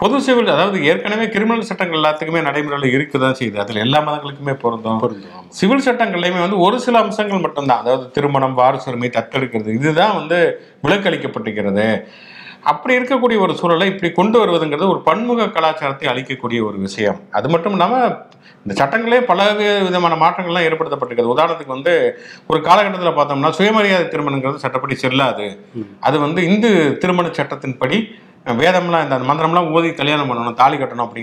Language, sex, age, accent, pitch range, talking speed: English, male, 50-69, Indian, 130-190 Hz, 125 wpm